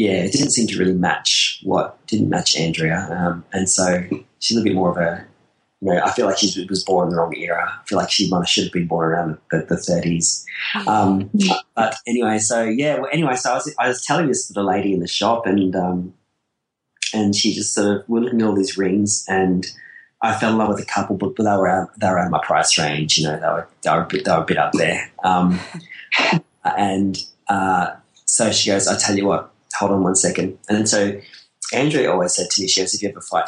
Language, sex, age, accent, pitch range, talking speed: English, male, 20-39, Australian, 90-110 Hz, 255 wpm